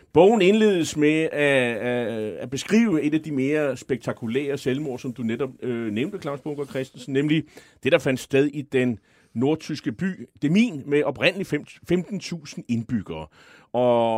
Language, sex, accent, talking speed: Danish, male, native, 145 wpm